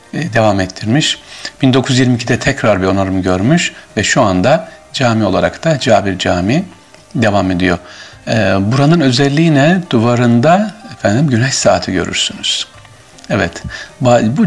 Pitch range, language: 100-135 Hz, Turkish